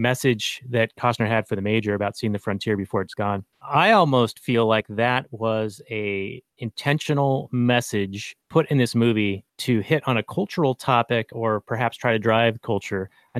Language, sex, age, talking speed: English, male, 30-49, 180 wpm